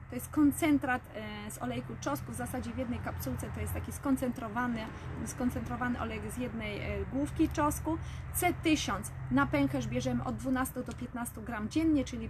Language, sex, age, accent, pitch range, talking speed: Polish, female, 20-39, native, 220-270 Hz, 155 wpm